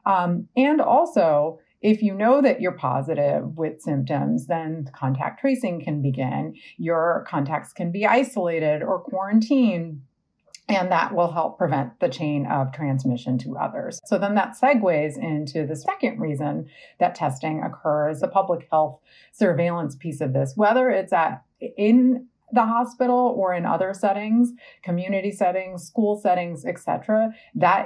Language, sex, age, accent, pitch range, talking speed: English, female, 40-59, American, 155-215 Hz, 145 wpm